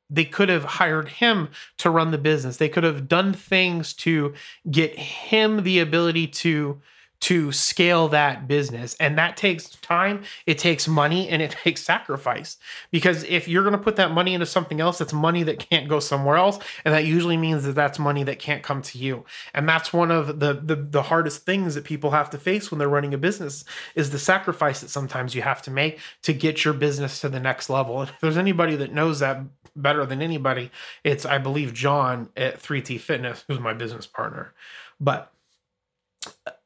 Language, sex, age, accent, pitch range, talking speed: English, male, 30-49, American, 145-175 Hz, 200 wpm